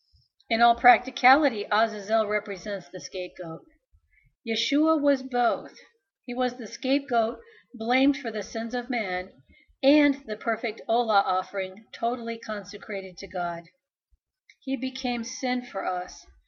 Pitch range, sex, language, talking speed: 185-240 Hz, female, English, 125 wpm